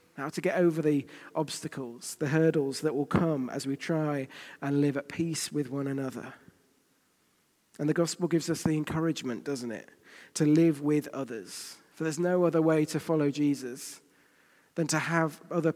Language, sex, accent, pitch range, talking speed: English, male, British, 145-170 Hz, 175 wpm